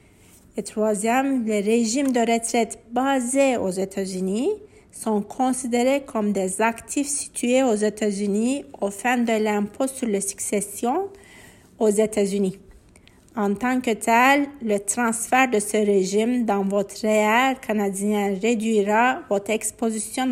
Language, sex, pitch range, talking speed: English, female, 205-250 Hz, 125 wpm